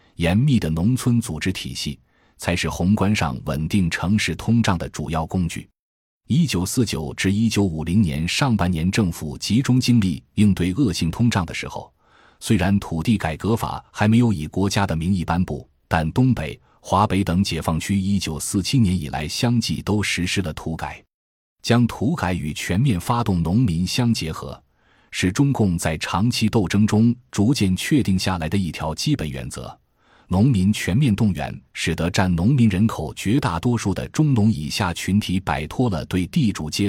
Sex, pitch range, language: male, 85-110 Hz, Chinese